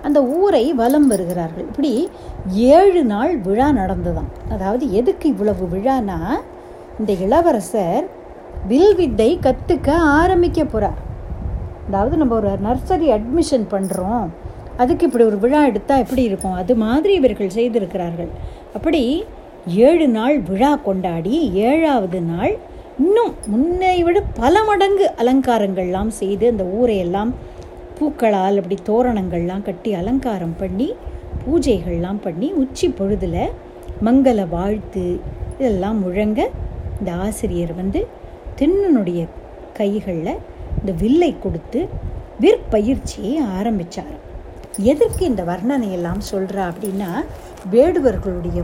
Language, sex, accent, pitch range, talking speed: Tamil, female, native, 195-300 Hz, 100 wpm